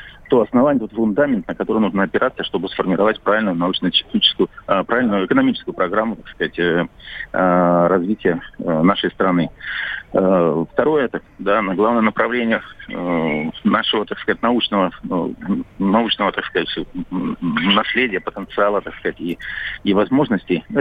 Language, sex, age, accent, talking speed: Russian, male, 40-59, native, 120 wpm